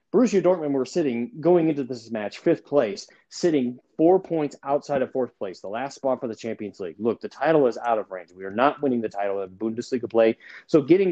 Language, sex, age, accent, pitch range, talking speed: English, male, 30-49, American, 120-170 Hz, 225 wpm